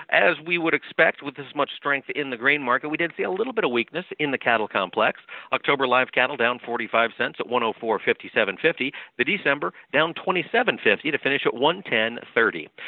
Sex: male